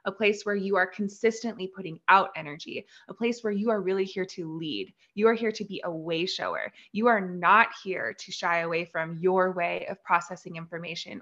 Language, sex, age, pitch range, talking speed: English, female, 20-39, 175-215 Hz, 210 wpm